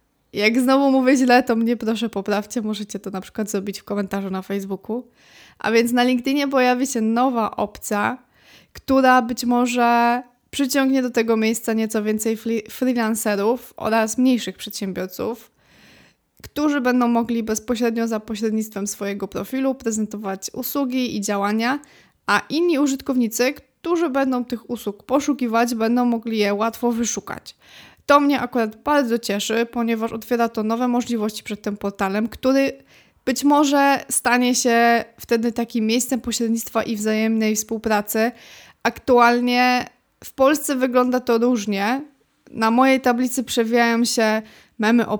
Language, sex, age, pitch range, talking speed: Polish, female, 20-39, 220-255 Hz, 135 wpm